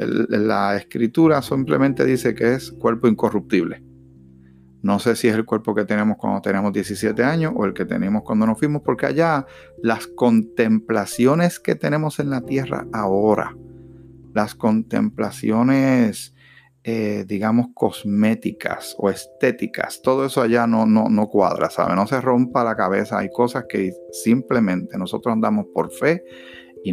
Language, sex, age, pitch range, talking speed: Spanish, male, 50-69, 105-150 Hz, 145 wpm